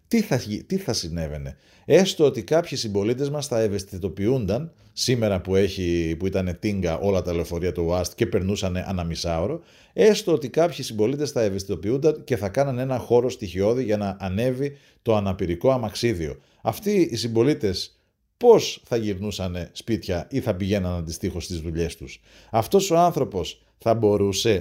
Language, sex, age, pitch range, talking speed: Greek, male, 40-59, 95-130 Hz, 150 wpm